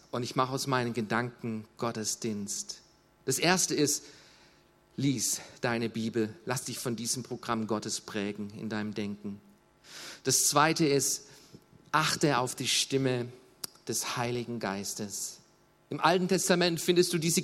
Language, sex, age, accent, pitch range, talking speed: German, male, 40-59, German, 125-175 Hz, 135 wpm